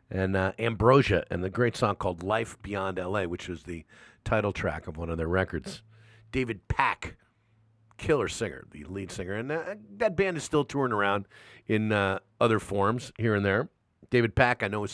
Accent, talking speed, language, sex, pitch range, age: American, 195 wpm, English, male, 95-115 Hz, 50-69